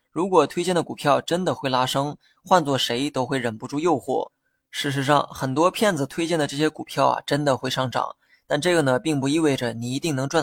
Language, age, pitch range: Chinese, 20-39, 135-165 Hz